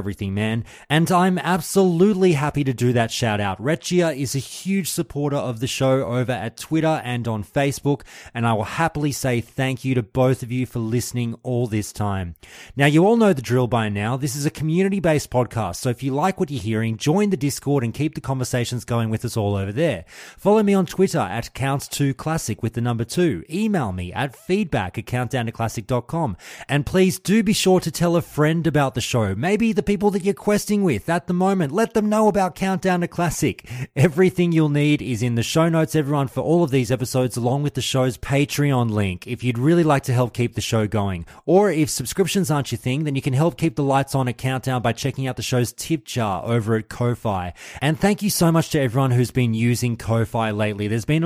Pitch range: 115-165 Hz